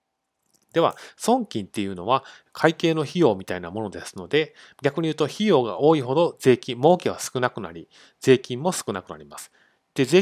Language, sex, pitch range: Japanese, male, 110-165 Hz